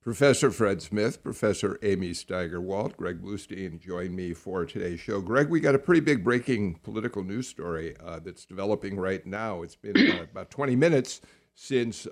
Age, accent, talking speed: 50-69, American, 175 wpm